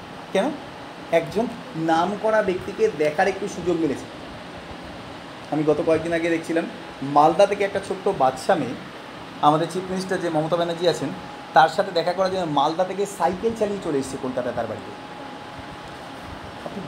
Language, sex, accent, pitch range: Bengali, male, native, 165-225 Hz